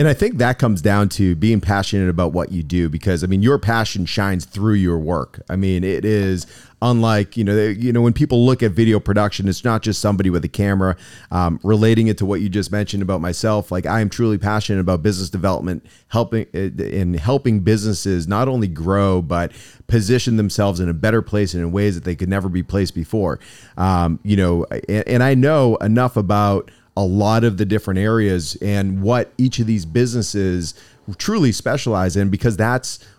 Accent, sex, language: American, male, English